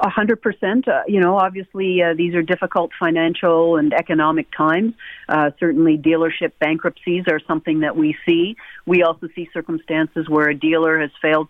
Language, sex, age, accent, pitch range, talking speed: English, female, 50-69, American, 165-200 Hz, 155 wpm